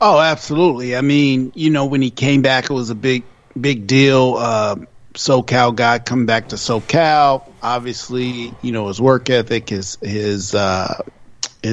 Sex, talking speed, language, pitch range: male, 165 wpm, English, 115-135 Hz